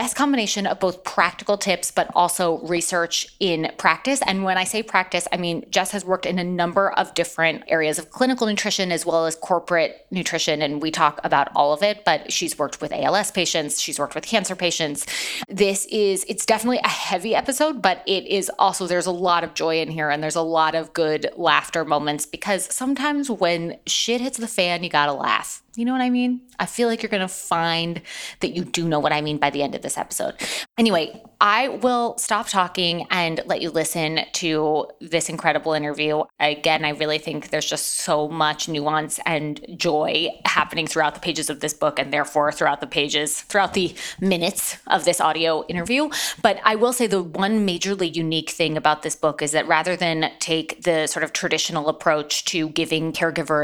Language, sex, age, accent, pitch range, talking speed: English, female, 20-39, American, 155-205 Hz, 205 wpm